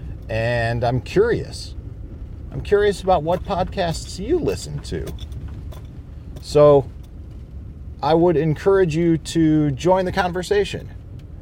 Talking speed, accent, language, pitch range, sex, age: 105 wpm, American, English, 80-120 Hz, male, 40-59